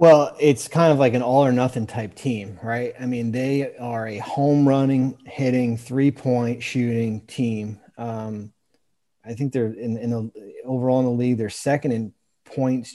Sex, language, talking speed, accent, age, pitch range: male, English, 180 wpm, American, 30-49, 105-125 Hz